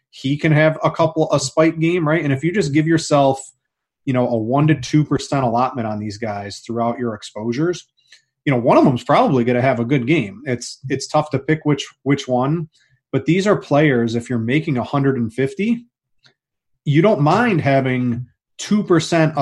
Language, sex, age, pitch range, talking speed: English, male, 30-49, 125-155 Hz, 190 wpm